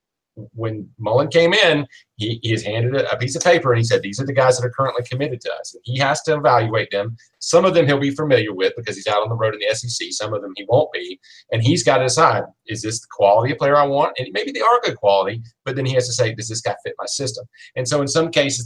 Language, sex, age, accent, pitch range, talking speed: English, male, 40-59, American, 110-140 Hz, 285 wpm